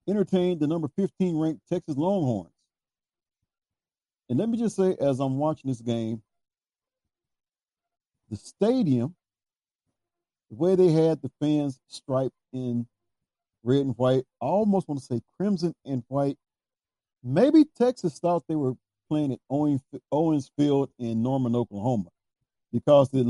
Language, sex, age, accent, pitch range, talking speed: English, male, 50-69, American, 120-175 Hz, 130 wpm